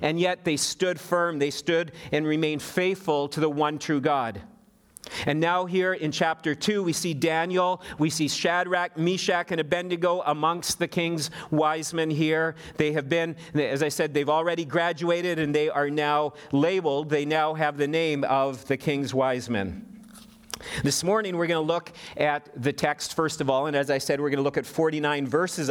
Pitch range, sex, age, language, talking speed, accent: 150-180 Hz, male, 40-59, English, 195 wpm, American